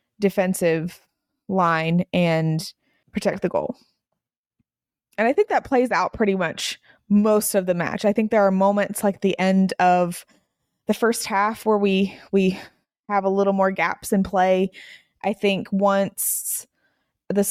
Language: English